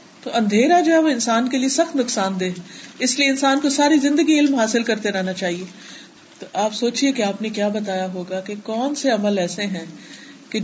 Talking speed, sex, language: 215 wpm, female, Urdu